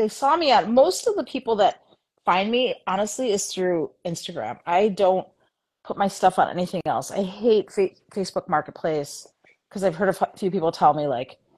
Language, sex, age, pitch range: English, female, 30-49, 170-225 Hz